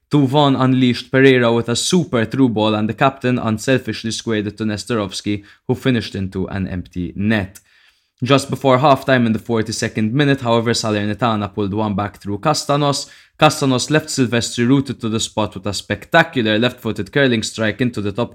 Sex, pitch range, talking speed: male, 100-125 Hz, 170 wpm